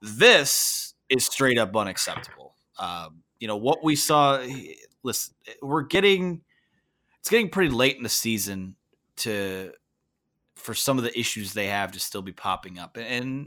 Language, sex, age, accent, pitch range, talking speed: English, male, 30-49, American, 100-140 Hz, 155 wpm